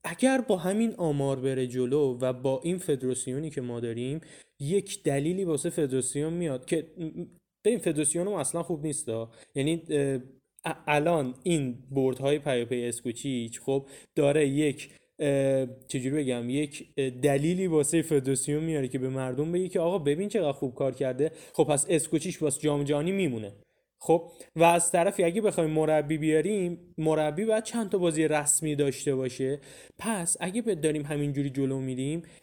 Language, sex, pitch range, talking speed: Persian, male, 135-175 Hz, 150 wpm